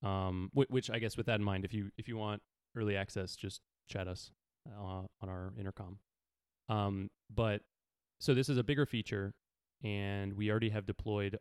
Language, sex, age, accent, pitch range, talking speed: English, male, 30-49, American, 95-110 Hz, 190 wpm